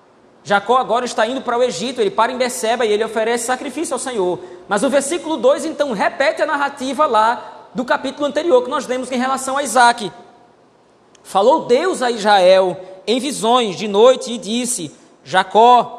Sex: male